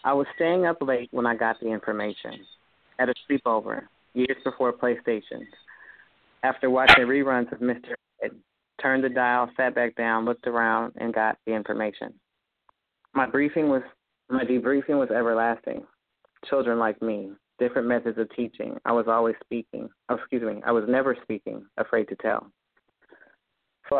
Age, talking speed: 30-49, 155 wpm